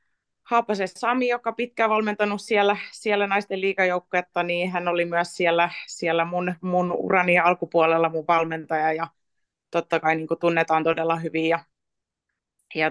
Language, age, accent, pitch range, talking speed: Finnish, 20-39, native, 165-205 Hz, 140 wpm